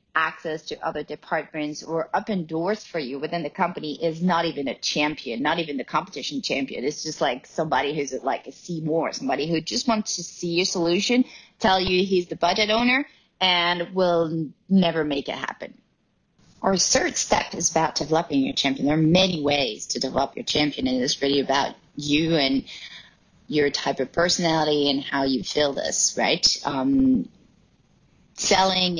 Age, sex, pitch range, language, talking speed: 30-49, female, 145-185 Hz, English, 180 wpm